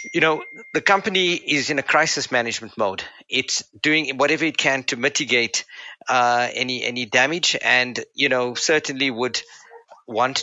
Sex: male